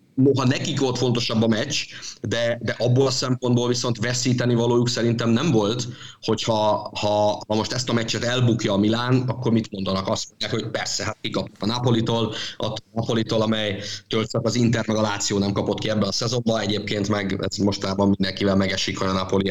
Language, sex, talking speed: Hungarian, male, 190 wpm